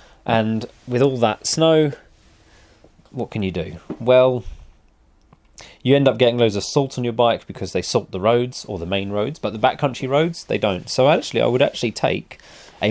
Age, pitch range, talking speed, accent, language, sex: 30-49, 100-130 Hz, 195 wpm, British, English, male